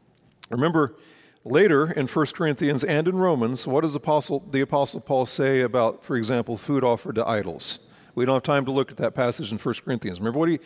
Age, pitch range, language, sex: 40-59, 135-195 Hz, English, male